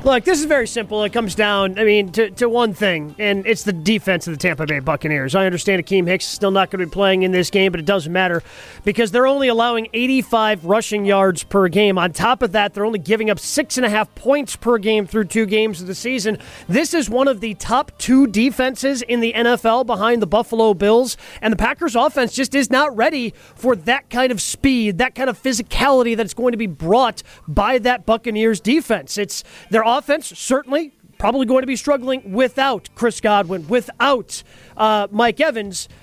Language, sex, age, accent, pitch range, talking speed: English, male, 30-49, American, 200-250 Hz, 205 wpm